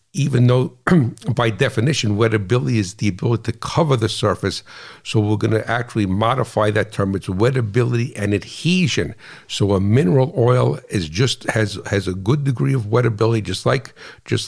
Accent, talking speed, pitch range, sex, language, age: American, 160 wpm, 105-130 Hz, male, English, 60-79